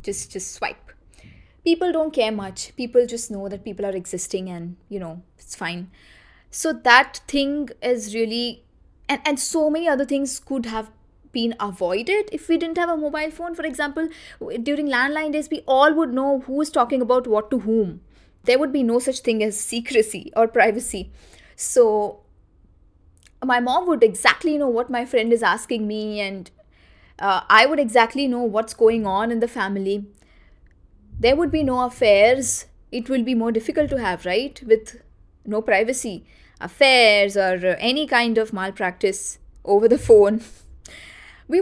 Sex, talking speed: female, 165 wpm